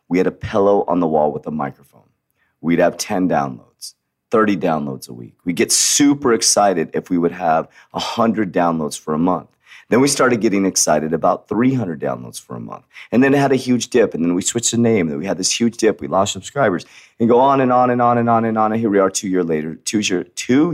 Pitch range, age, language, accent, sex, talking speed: 85-125 Hz, 30-49, English, American, male, 250 wpm